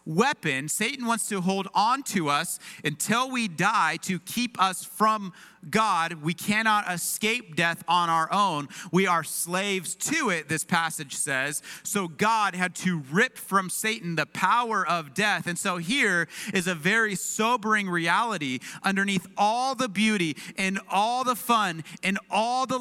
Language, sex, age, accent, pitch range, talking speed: English, male, 30-49, American, 155-225 Hz, 160 wpm